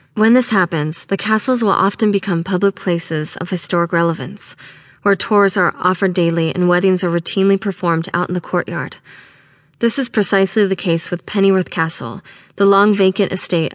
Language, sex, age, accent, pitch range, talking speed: English, female, 20-39, American, 170-200 Hz, 165 wpm